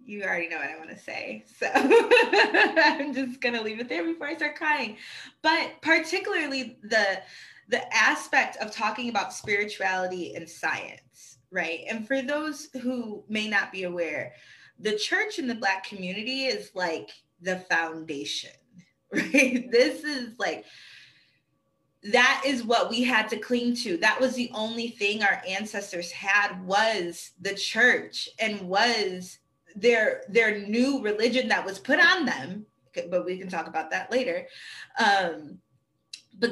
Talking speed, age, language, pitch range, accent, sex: 155 wpm, 20-39, English, 185-255 Hz, American, female